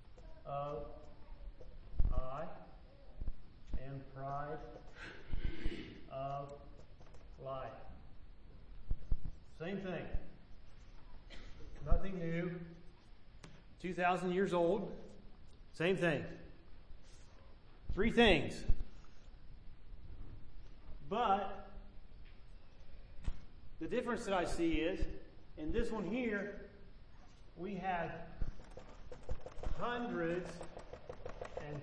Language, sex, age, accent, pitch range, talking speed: English, male, 40-59, American, 140-190 Hz, 60 wpm